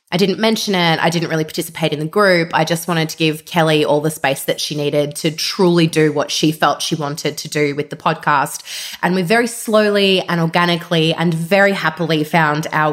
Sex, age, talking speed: female, 20-39, 220 wpm